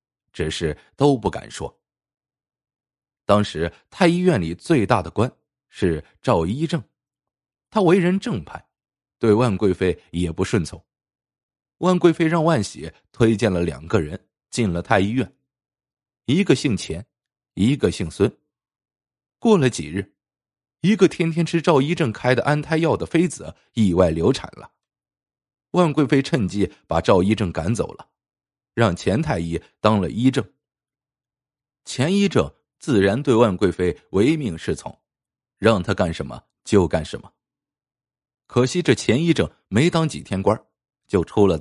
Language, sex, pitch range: Chinese, male, 100-160 Hz